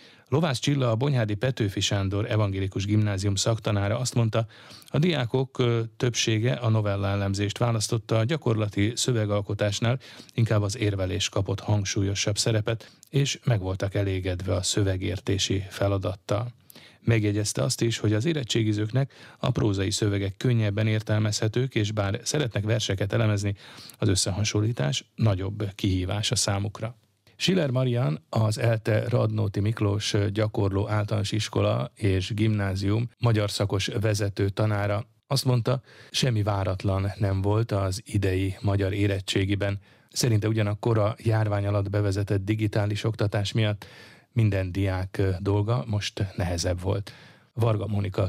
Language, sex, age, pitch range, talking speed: Hungarian, male, 30-49, 100-115 Hz, 120 wpm